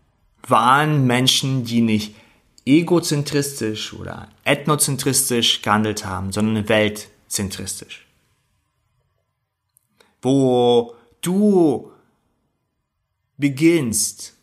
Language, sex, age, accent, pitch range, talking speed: German, male, 30-49, German, 110-135 Hz, 60 wpm